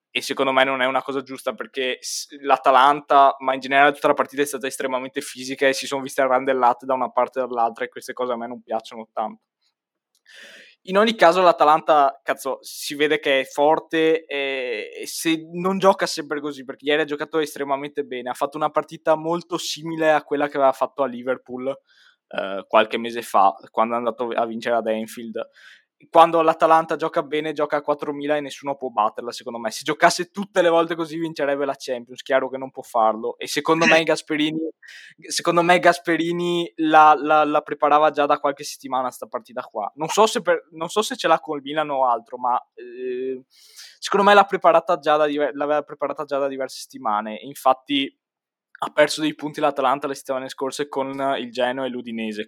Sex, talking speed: male, 195 wpm